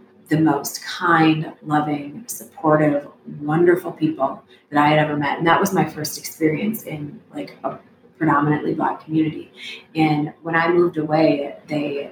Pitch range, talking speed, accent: 145-165 Hz, 150 wpm, American